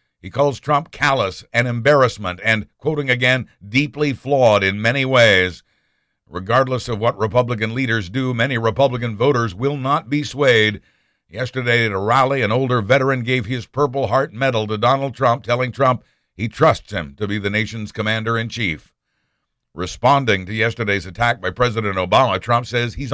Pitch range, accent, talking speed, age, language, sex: 110-140 Hz, American, 160 wpm, 60-79, English, male